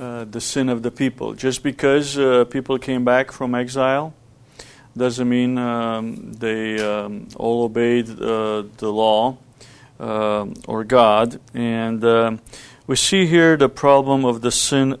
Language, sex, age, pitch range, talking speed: English, male, 40-59, 115-135 Hz, 150 wpm